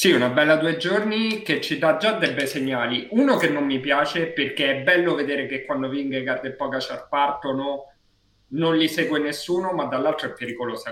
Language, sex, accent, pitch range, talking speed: Italian, male, native, 125-150 Hz, 190 wpm